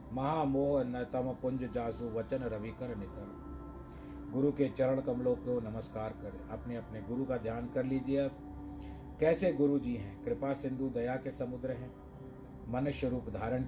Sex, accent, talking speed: male, native, 155 wpm